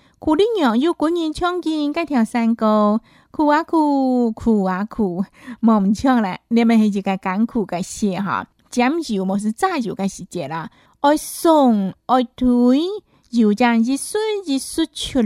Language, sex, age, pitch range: Chinese, female, 20-39, 205-305 Hz